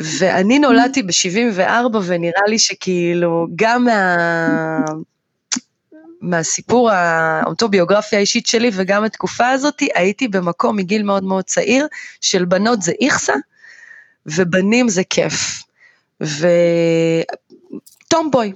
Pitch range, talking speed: 180-240 Hz, 95 wpm